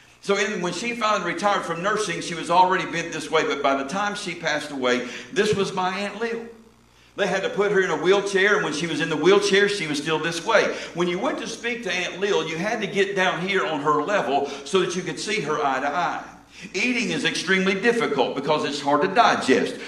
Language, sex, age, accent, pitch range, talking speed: English, male, 50-69, American, 165-225 Hz, 240 wpm